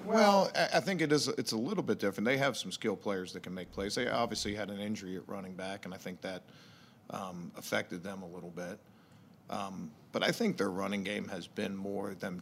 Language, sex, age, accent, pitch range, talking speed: English, male, 50-69, American, 95-105 Hz, 220 wpm